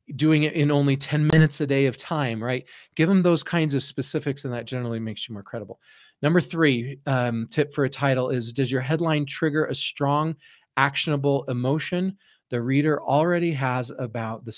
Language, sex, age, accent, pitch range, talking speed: English, male, 40-59, American, 125-150 Hz, 190 wpm